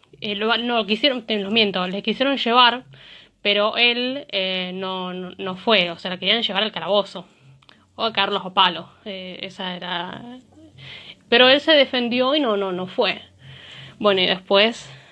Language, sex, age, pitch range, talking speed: Spanish, female, 20-39, 190-240 Hz, 160 wpm